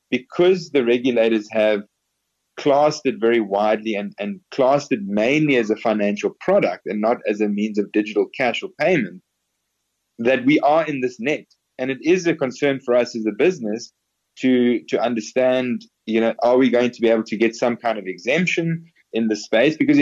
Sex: male